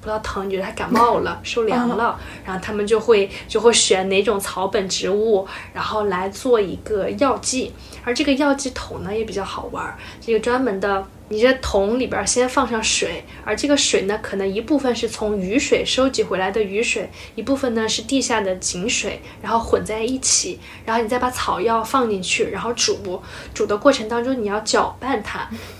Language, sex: Chinese, female